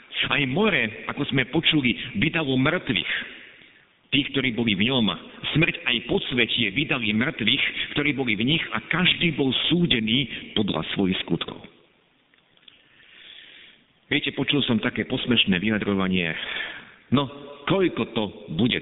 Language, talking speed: Slovak, 125 wpm